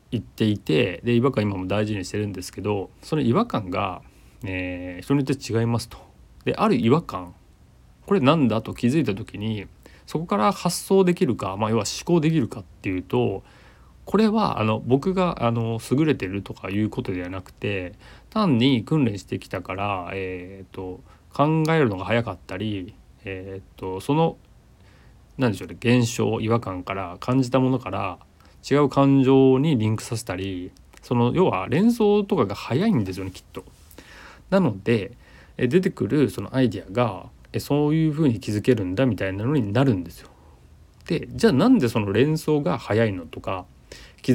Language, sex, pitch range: Japanese, male, 95-135 Hz